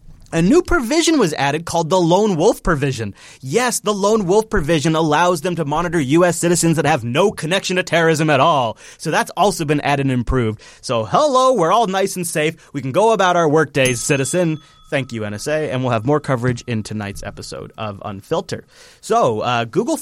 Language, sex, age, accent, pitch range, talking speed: English, male, 30-49, American, 130-170 Hz, 200 wpm